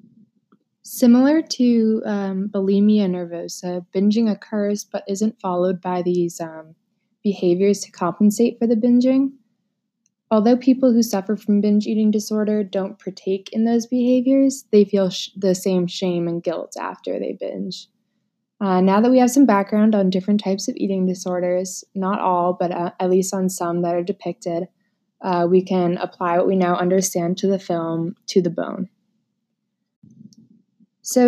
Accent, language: American, English